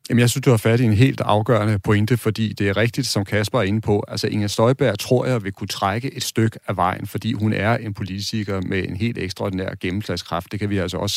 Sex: male